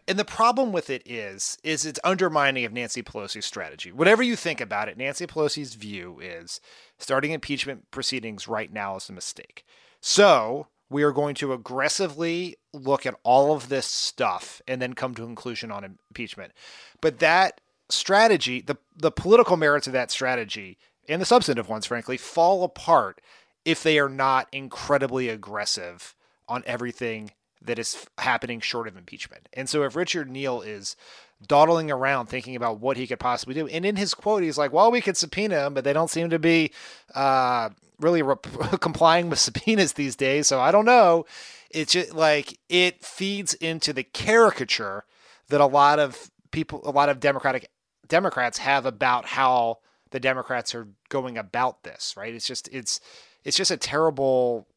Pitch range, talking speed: 125-165 Hz, 175 wpm